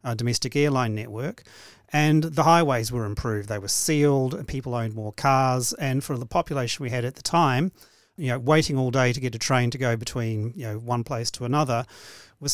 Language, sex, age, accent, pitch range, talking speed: English, male, 40-59, Australian, 120-145 Hz, 215 wpm